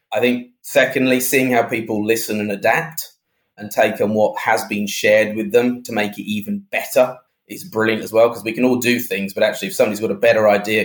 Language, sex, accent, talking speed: English, male, British, 225 wpm